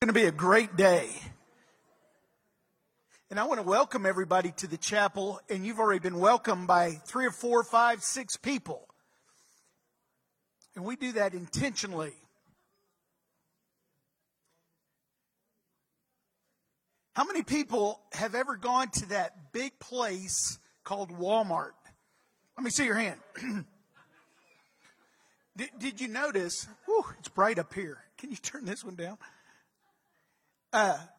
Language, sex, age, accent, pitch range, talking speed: English, male, 50-69, American, 195-260 Hz, 125 wpm